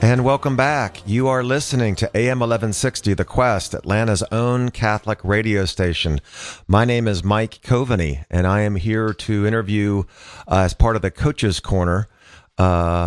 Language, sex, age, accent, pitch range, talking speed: English, male, 50-69, American, 90-110 Hz, 160 wpm